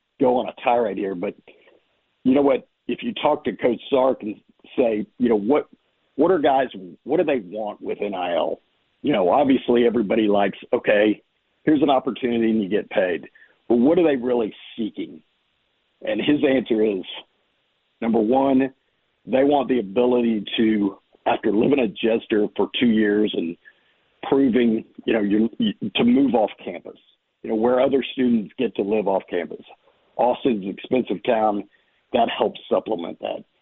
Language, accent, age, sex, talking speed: English, American, 50-69, male, 165 wpm